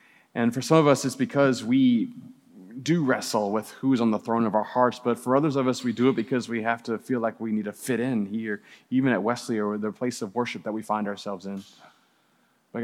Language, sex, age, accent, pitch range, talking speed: English, male, 30-49, American, 100-135 Hz, 250 wpm